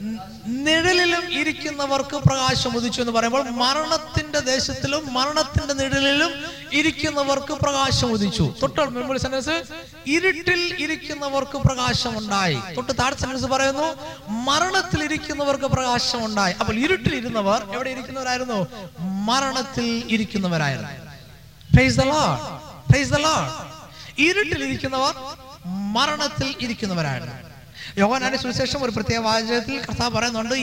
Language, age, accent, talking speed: Malayalam, 20-39, native, 55 wpm